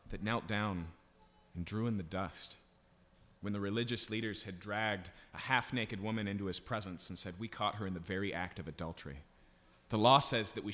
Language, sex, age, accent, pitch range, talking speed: English, male, 30-49, American, 95-125 Hz, 200 wpm